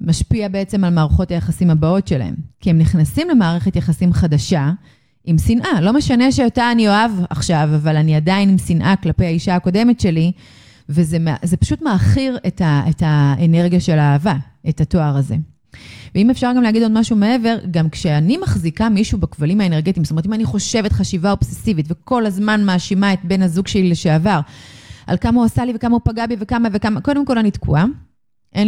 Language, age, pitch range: Hebrew, 30-49, 160-210 Hz